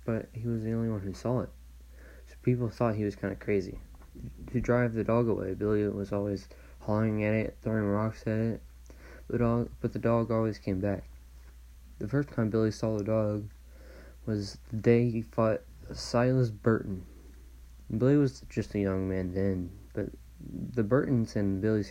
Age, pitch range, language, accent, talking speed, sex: 20-39, 95-115 Hz, English, American, 185 wpm, male